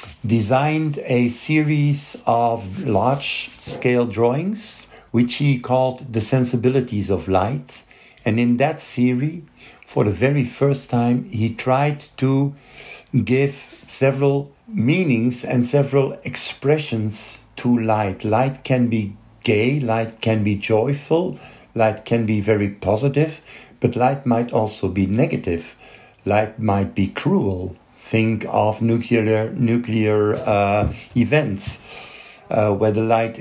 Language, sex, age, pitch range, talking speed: German, male, 50-69, 105-130 Hz, 120 wpm